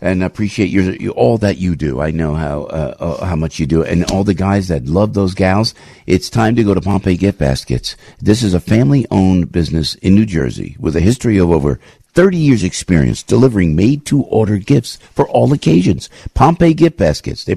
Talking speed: 205 wpm